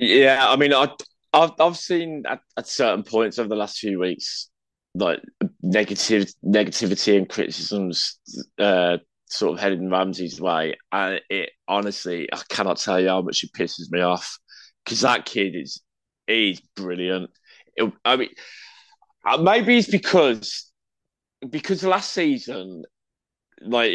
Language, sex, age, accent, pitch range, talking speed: English, male, 20-39, British, 100-135 Hz, 135 wpm